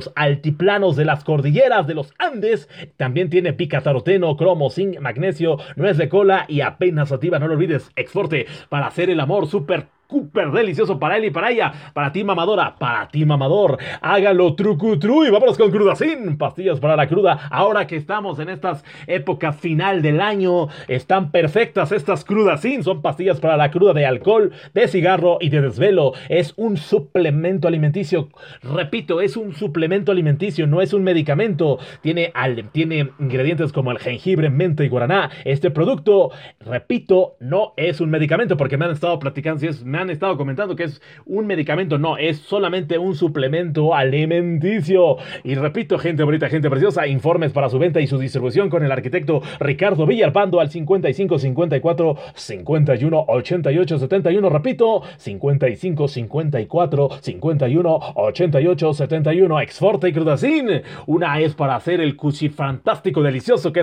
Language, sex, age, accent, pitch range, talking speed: Spanish, male, 30-49, Mexican, 145-185 Hz, 160 wpm